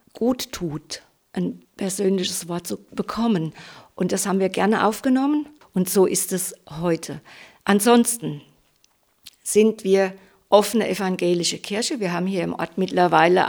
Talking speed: 135 wpm